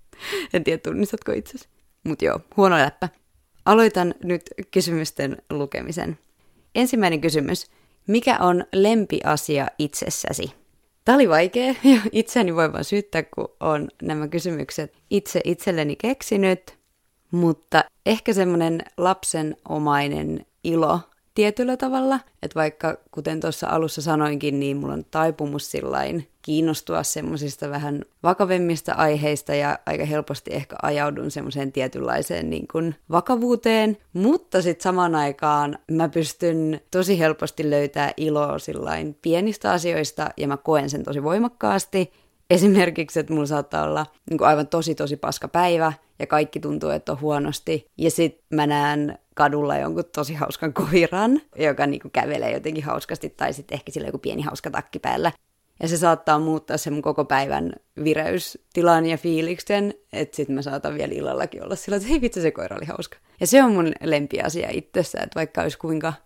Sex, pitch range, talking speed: female, 150-185 Hz, 145 wpm